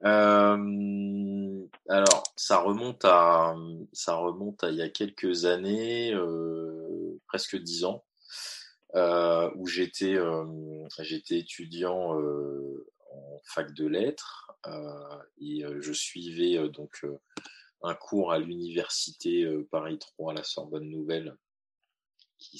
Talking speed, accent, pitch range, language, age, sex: 120 wpm, French, 75-95 Hz, French, 20-39, male